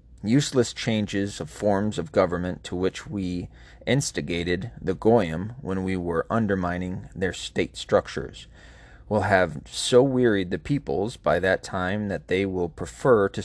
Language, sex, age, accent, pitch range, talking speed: English, male, 30-49, American, 90-110 Hz, 145 wpm